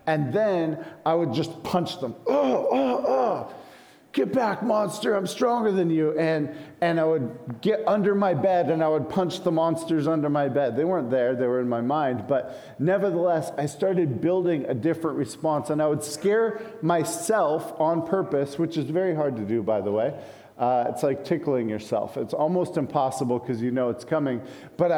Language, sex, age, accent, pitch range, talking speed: English, male, 50-69, American, 140-185 Hz, 190 wpm